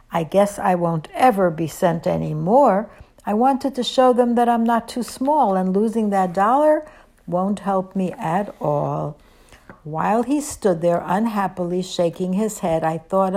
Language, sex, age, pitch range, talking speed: English, female, 60-79, 175-225 Hz, 170 wpm